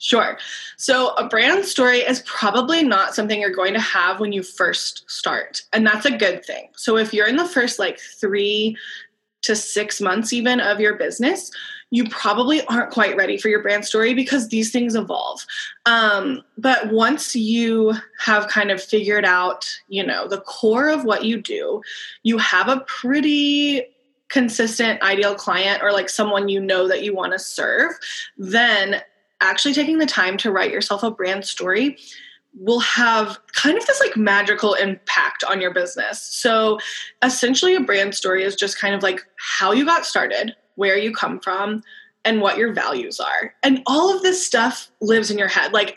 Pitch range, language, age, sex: 200-260 Hz, English, 20-39, female